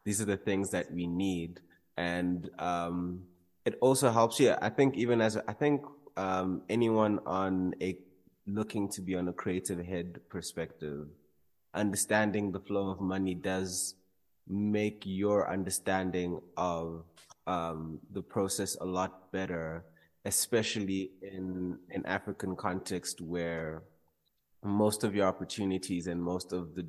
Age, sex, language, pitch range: 20-39, male, English, 85-100 Hz